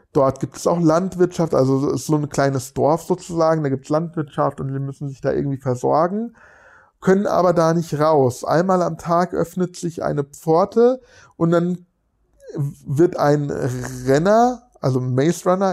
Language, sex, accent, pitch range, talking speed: English, male, German, 140-180 Hz, 160 wpm